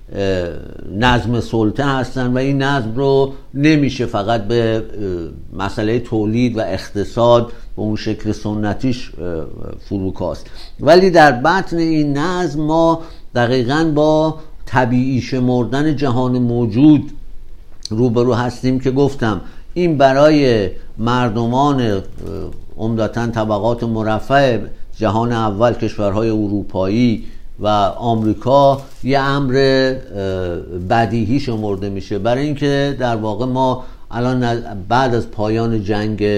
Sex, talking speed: male, 100 wpm